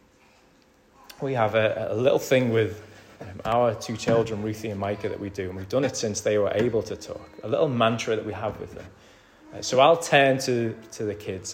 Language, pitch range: English, 110-170 Hz